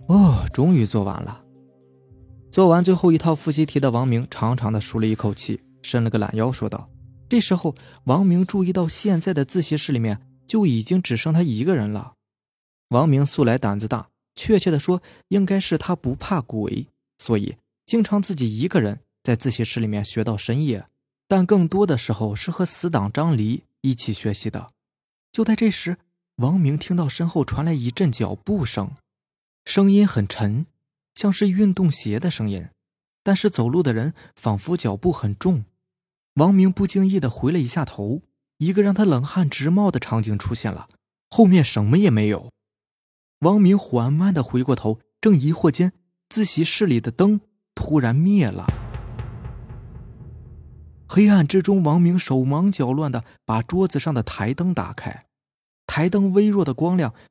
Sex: male